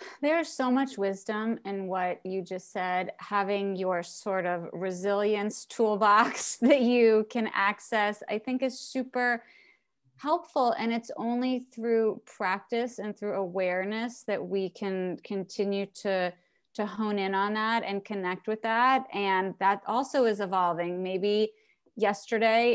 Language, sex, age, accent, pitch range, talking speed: English, female, 30-49, American, 185-215 Hz, 140 wpm